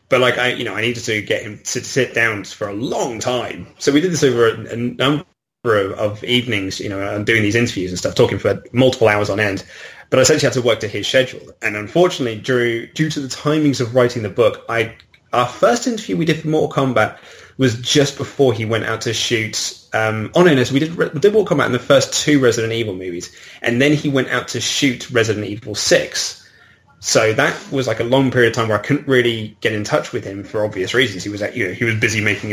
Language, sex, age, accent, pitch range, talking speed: English, male, 20-39, British, 105-130 Hz, 245 wpm